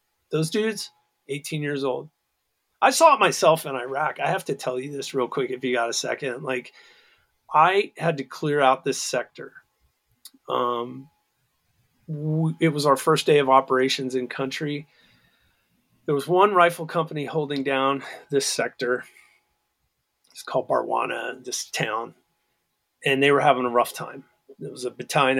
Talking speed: 160 wpm